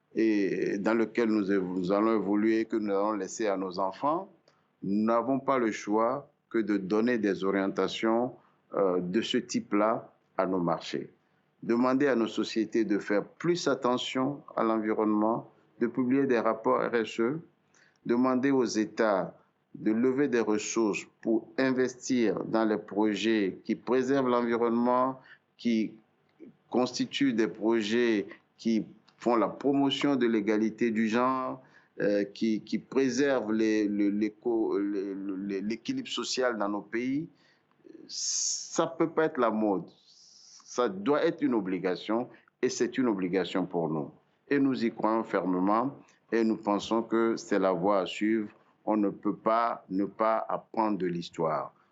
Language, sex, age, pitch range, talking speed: French, male, 60-79, 100-125 Hz, 150 wpm